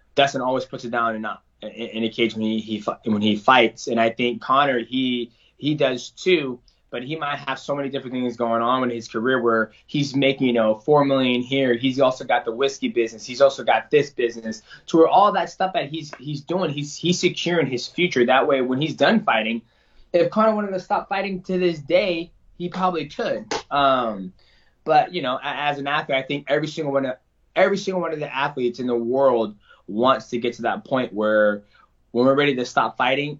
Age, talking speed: 20-39, 220 wpm